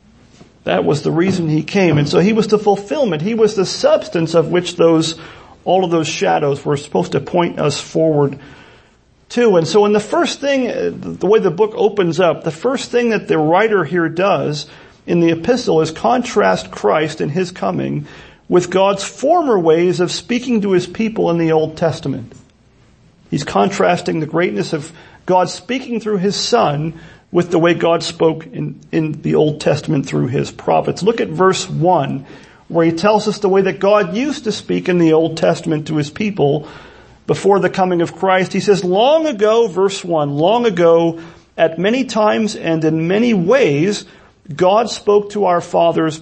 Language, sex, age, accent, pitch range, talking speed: English, male, 40-59, American, 165-215 Hz, 185 wpm